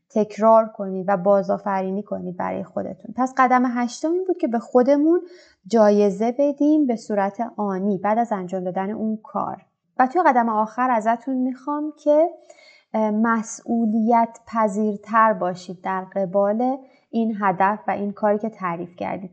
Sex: female